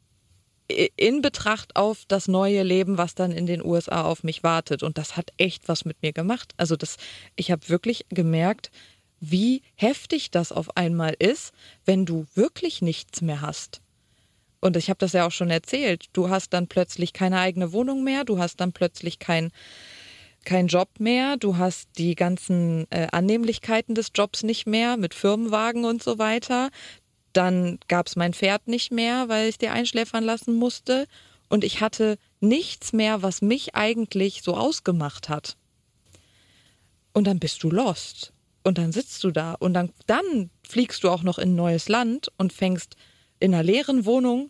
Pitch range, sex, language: 170-225 Hz, female, German